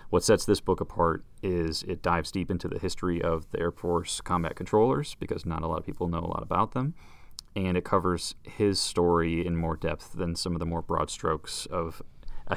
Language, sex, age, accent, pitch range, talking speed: English, male, 30-49, American, 80-90 Hz, 220 wpm